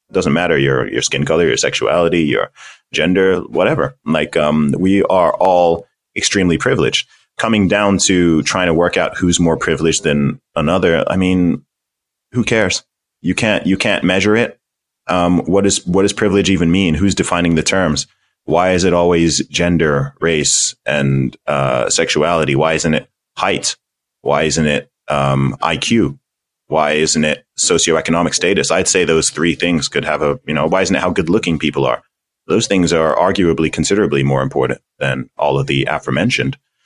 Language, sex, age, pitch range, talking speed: English, male, 30-49, 75-90 Hz, 175 wpm